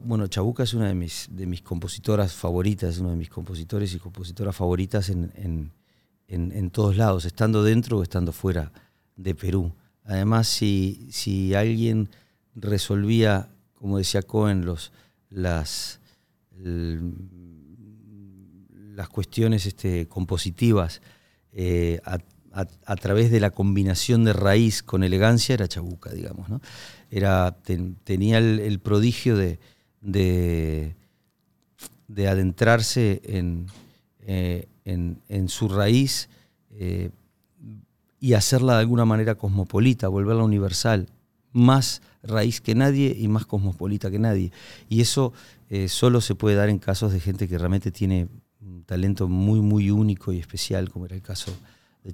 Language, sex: Spanish, male